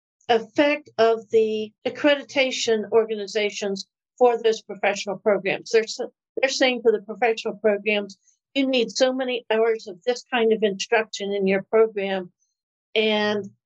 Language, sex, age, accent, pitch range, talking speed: English, female, 60-79, American, 195-245 Hz, 130 wpm